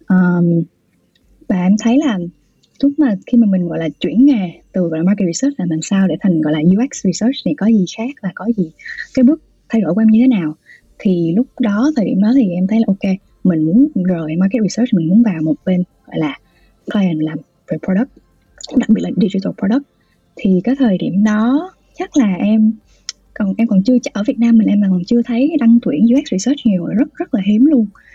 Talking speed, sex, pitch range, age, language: 225 wpm, female, 180-245 Hz, 20-39, Vietnamese